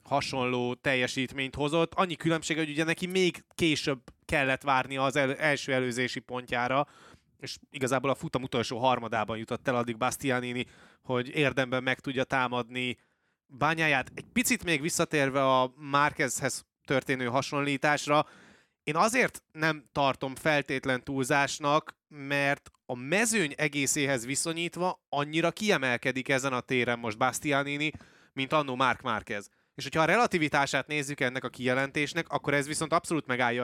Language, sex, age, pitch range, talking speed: Hungarian, male, 20-39, 130-150 Hz, 135 wpm